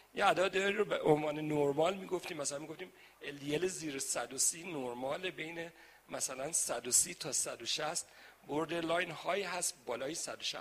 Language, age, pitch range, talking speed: Persian, 50-69, 155-215 Hz, 135 wpm